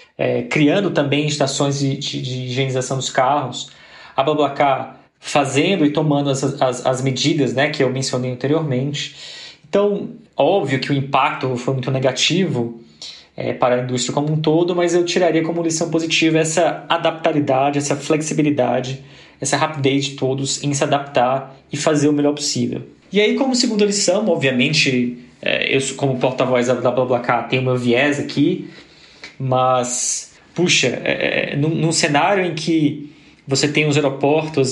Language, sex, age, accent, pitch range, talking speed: Portuguese, male, 20-39, Brazilian, 130-150 Hz, 155 wpm